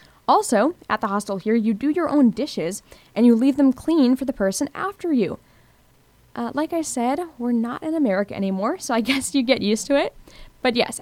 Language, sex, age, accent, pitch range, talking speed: English, female, 10-29, American, 200-285 Hz, 210 wpm